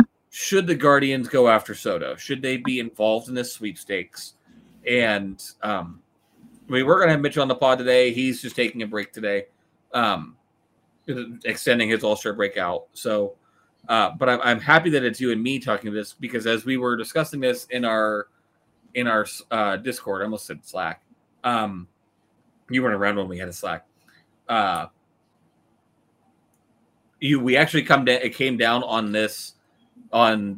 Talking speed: 170 wpm